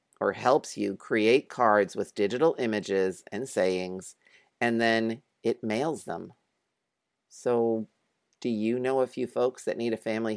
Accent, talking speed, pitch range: American, 150 wpm, 100-130 Hz